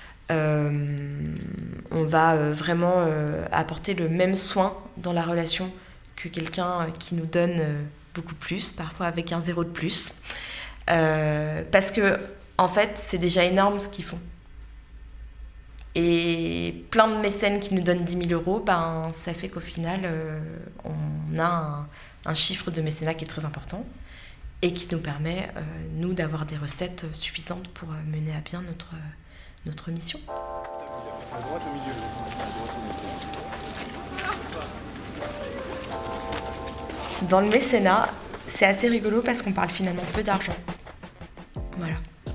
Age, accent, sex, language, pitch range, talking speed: 20-39, French, female, French, 160-195 Hz, 135 wpm